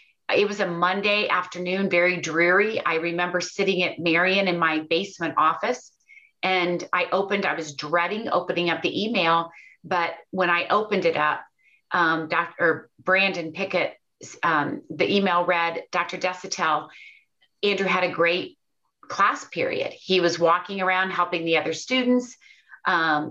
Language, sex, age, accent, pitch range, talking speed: English, female, 30-49, American, 170-200 Hz, 145 wpm